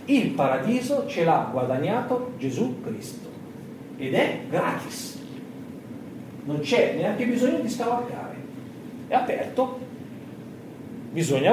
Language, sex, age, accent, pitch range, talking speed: Italian, male, 40-59, native, 150-250 Hz, 100 wpm